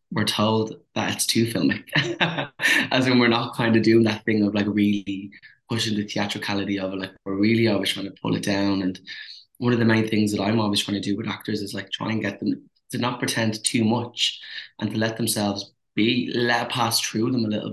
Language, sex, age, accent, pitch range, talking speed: English, male, 20-39, Irish, 105-115 Hz, 225 wpm